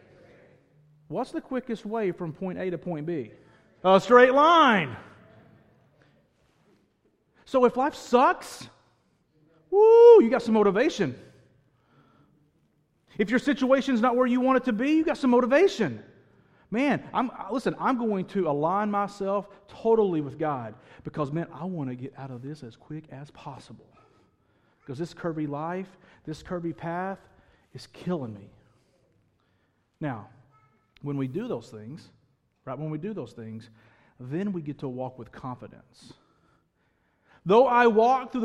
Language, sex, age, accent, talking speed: English, male, 40-59, American, 145 wpm